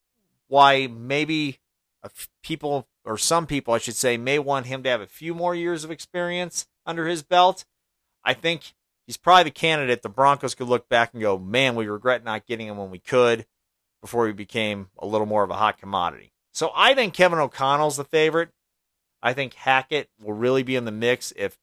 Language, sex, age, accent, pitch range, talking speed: English, male, 40-59, American, 105-140 Hz, 200 wpm